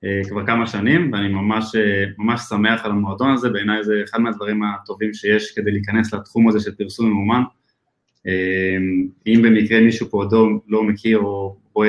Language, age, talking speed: Hebrew, 20-39, 175 wpm